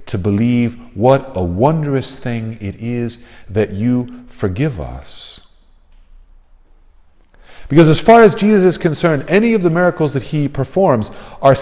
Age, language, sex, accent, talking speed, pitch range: 50-69, English, male, American, 140 wpm, 95-135 Hz